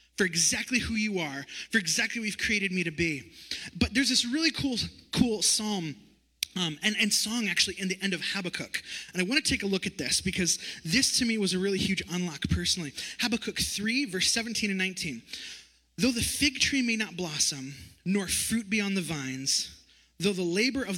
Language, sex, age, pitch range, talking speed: English, male, 20-39, 170-245 Hz, 205 wpm